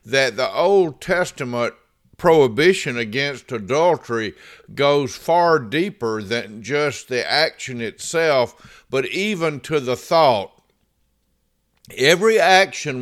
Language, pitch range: English, 125-155 Hz